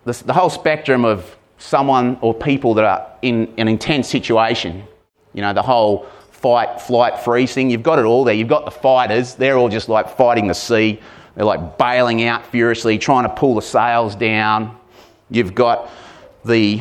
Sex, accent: male, Australian